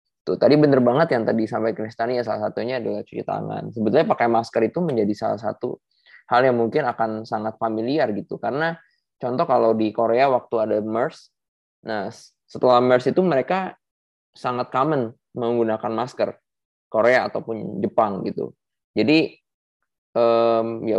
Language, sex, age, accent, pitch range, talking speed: Indonesian, male, 20-39, native, 105-125 Hz, 140 wpm